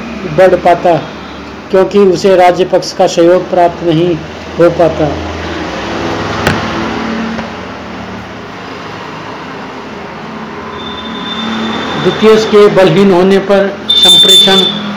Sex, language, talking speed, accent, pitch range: male, Hindi, 65 wpm, native, 175-195 Hz